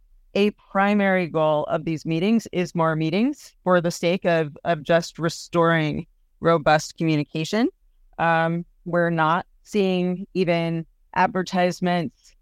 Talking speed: 115 wpm